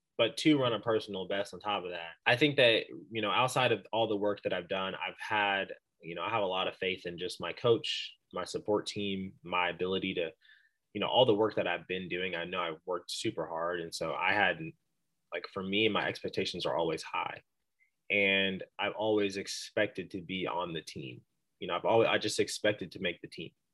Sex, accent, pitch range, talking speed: male, American, 95-110 Hz, 230 wpm